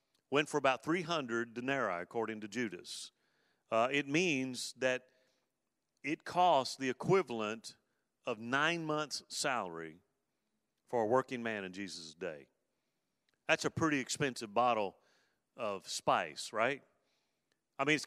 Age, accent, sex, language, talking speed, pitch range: 40-59, American, male, English, 125 wpm, 125-180 Hz